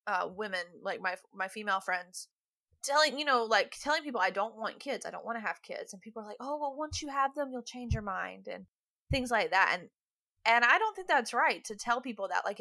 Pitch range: 205-295 Hz